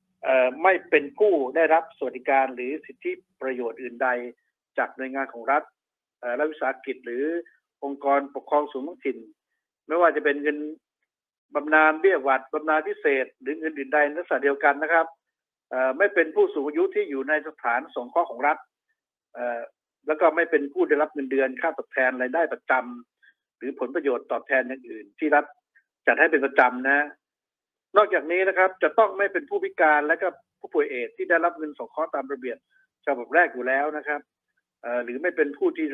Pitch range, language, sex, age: 135-175 Hz, Thai, male, 60-79